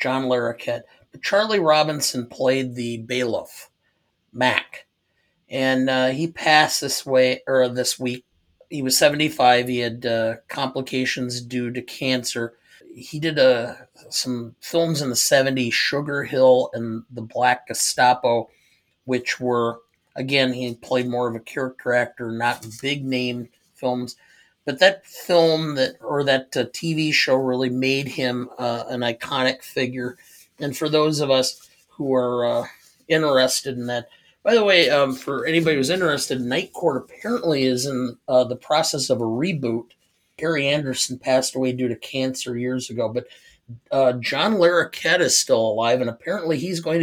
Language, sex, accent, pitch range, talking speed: English, male, American, 120-140 Hz, 155 wpm